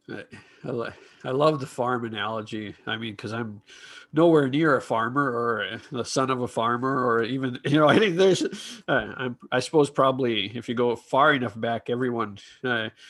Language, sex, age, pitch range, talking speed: English, male, 40-59, 120-155 Hz, 180 wpm